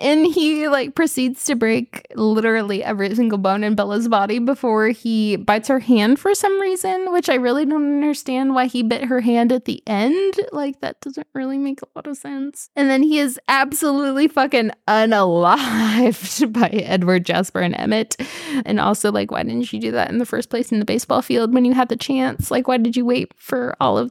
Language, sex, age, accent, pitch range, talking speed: English, female, 10-29, American, 215-275 Hz, 210 wpm